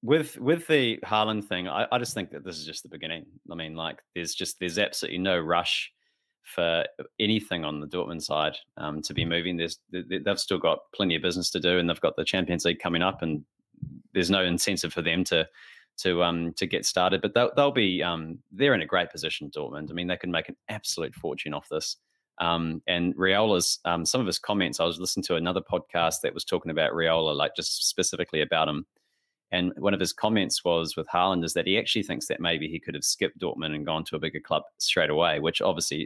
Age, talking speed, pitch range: 30-49, 230 wpm, 80-90 Hz